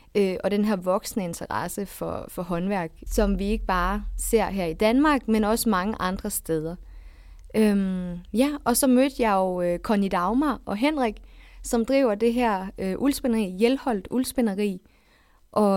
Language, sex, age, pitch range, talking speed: Danish, female, 20-39, 195-240 Hz, 165 wpm